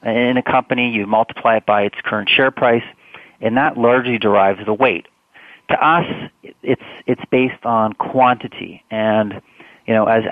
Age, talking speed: 40-59, 165 wpm